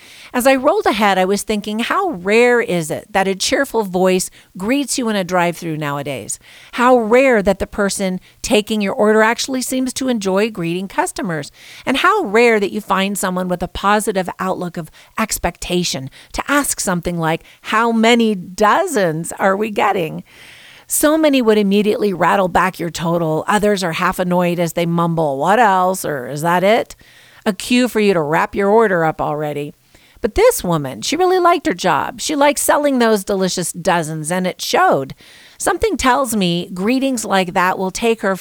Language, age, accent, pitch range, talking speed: English, 50-69, American, 175-240 Hz, 180 wpm